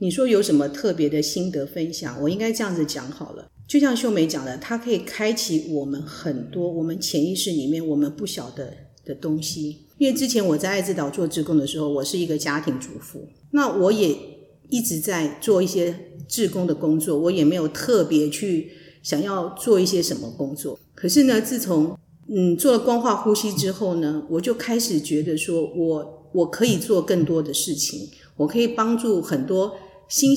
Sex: female